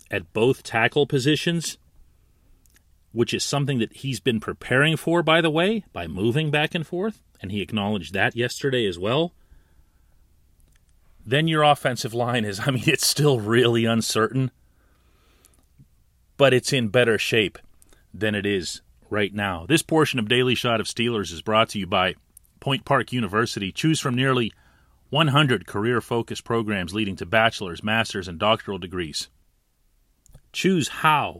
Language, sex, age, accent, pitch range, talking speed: English, male, 40-59, American, 95-140 Hz, 150 wpm